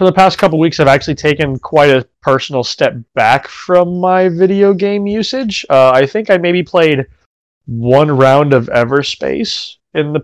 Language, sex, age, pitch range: English, male, 20-39, 115-145 Hz